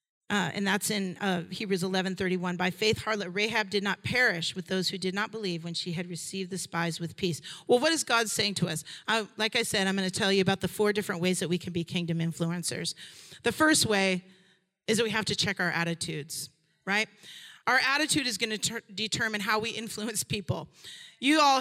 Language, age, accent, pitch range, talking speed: English, 40-59, American, 190-270 Hz, 225 wpm